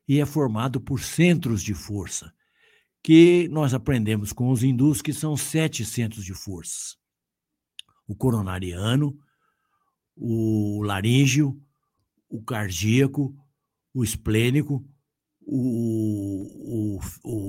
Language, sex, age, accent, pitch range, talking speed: Portuguese, male, 60-79, Brazilian, 105-145 Hz, 100 wpm